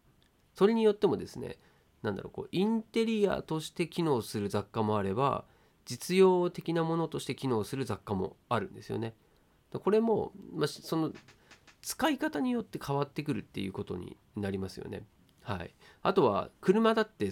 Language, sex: Japanese, male